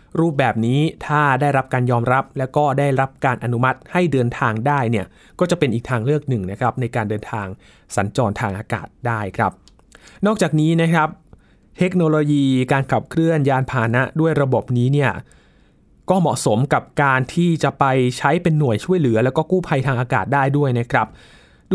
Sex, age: male, 20-39